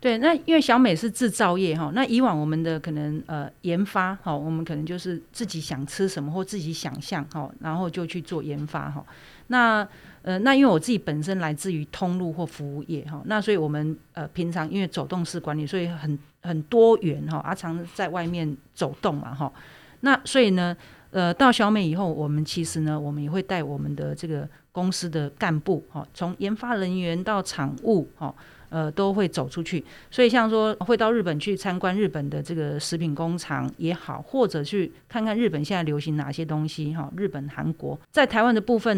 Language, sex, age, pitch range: Chinese, female, 40-59, 150-195 Hz